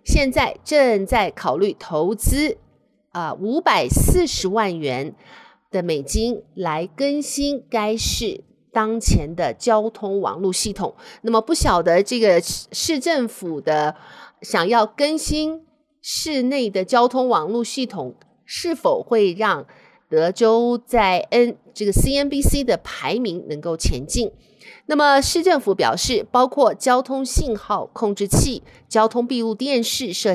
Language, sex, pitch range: Chinese, female, 195-285 Hz